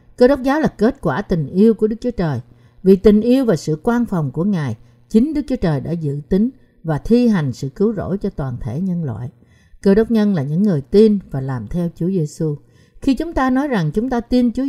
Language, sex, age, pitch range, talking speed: Vietnamese, female, 60-79, 155-235 Hz, 245 wpm